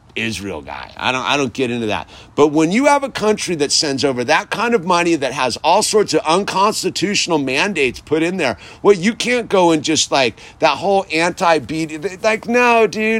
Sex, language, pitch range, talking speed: male, English, 145-225 Hz, 205 wpm